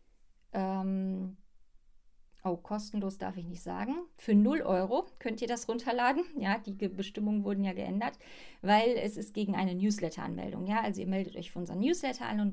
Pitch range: 190-240 Hz